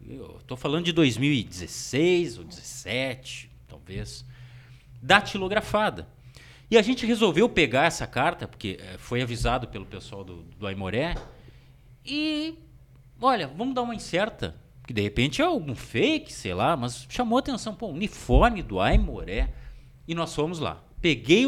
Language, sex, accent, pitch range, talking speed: Portuguese, male, Brazilian, 120-170 Hz, 140 wpm